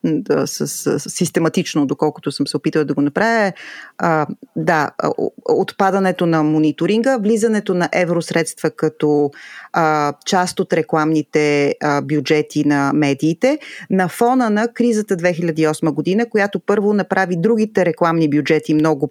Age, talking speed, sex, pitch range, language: 30-49, 130 wpm, female, 155-210 Hz, Bulgarian